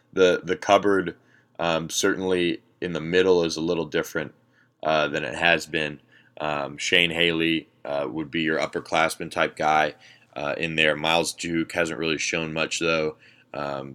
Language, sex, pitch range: English, male, 75-90 Hz